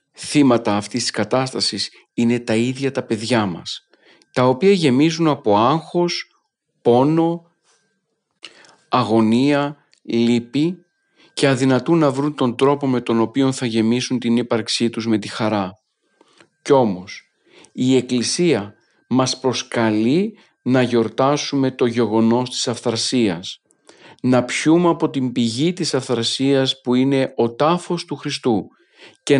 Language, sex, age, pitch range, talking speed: Greek, male, 50-69, 115-140 Hz, 125 wpm